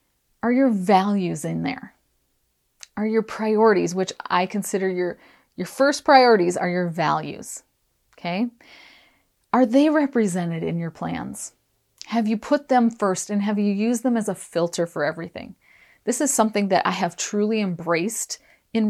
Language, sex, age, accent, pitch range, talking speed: English, female, 30-49, American, 180-230 Hz, 155 wpm